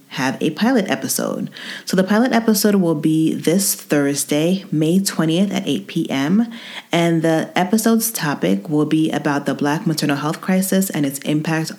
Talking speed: 165 wpm